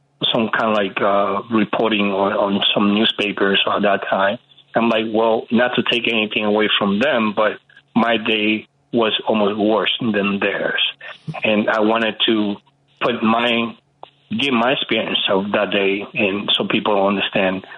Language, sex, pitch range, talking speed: English, male, 100-115 Hz, 160 wpm